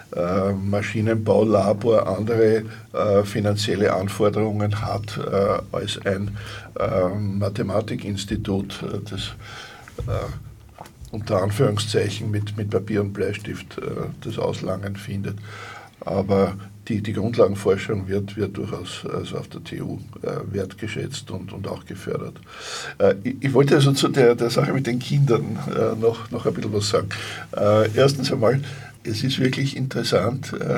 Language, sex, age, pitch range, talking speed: German, male, 60-79, 105-130 Hz, 135 wpm